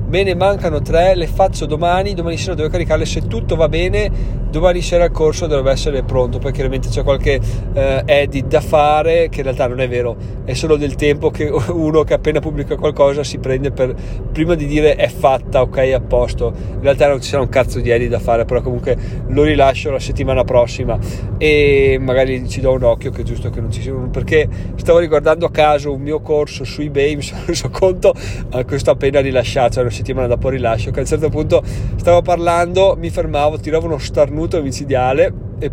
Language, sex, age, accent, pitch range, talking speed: Italian, male, 30-49, native, 120-150 Hz, 215 wpm